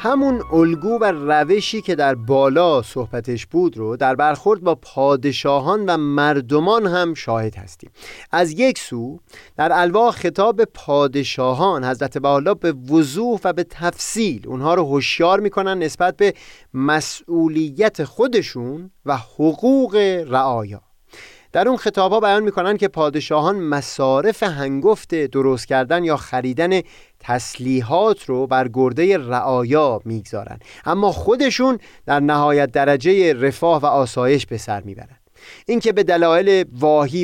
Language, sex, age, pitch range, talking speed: Persian, male, 30-49, 130-180 Hz, 125 wpm